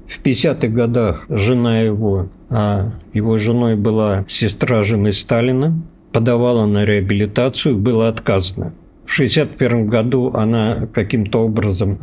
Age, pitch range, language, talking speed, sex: 50-69, 105-130 Hz, Russian, 120 wpm, male